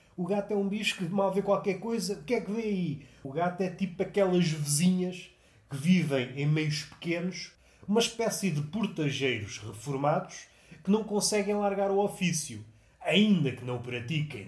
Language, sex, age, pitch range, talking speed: Portuguese, male, 30-49, 125-175 Hz, 180 wpm